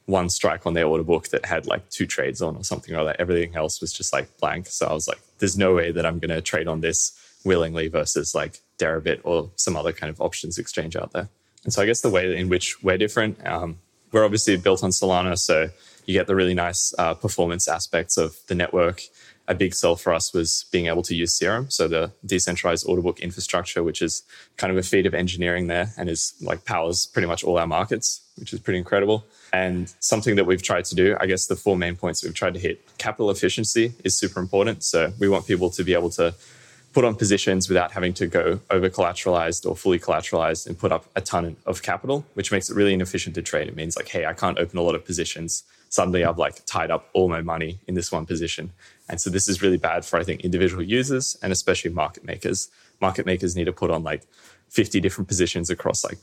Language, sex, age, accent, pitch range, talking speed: English, male, 20-39, Australian, 85-100 Hz, 235 wpm